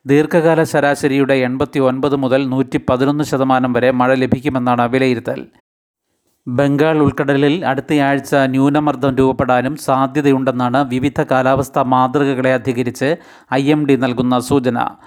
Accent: native